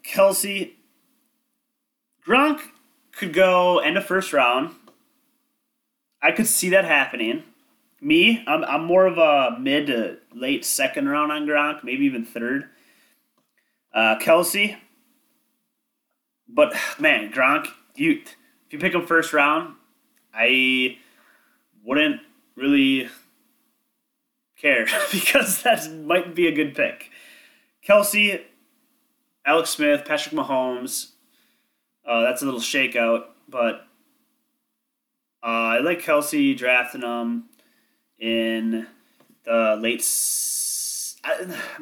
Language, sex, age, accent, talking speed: English, male, 30-49, American, 105 wpm